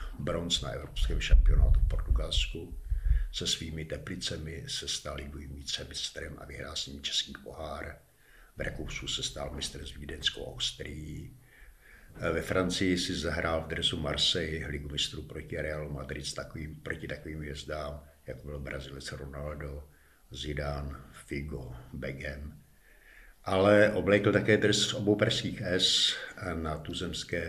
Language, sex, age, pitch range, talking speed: Czech, male, 60-79, 70-100 Hz, 130 wpm